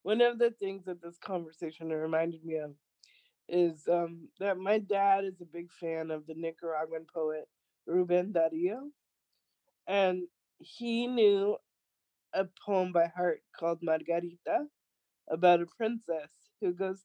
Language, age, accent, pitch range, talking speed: English, 20-39, American, 160-195 Hz, 135 wpm